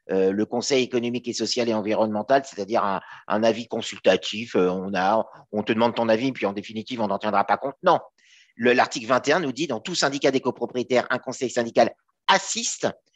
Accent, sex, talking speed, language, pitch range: French, male, 190 wpm, French, 120-165 Hz